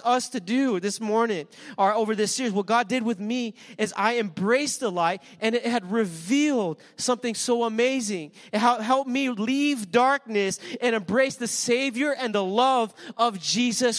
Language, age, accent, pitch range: English, 20-39, American, 205-255 Hz